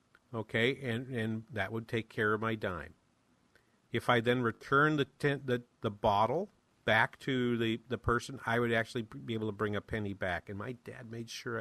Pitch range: 115-140 Hz